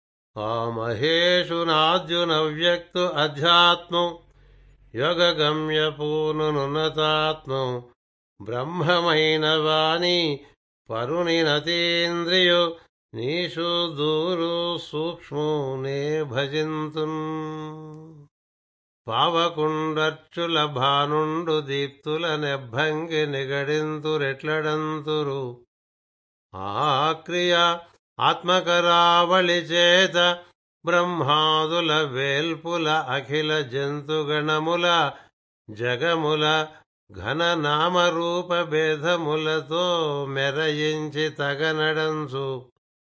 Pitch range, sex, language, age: 150-170 Hz, male, Telugu, 60-79